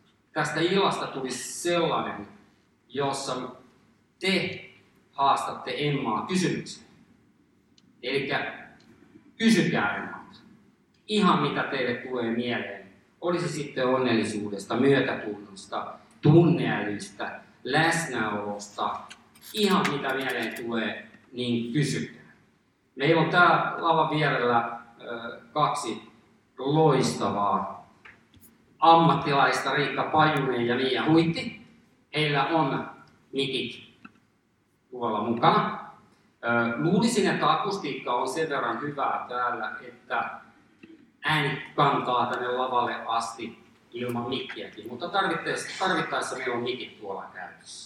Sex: male